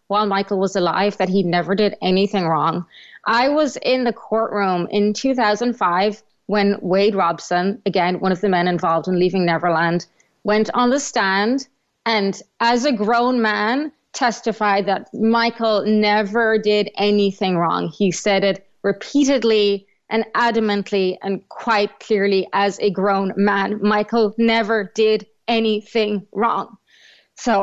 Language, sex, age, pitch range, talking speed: English, female, 30-49, 195-230 Hz, 140 wpm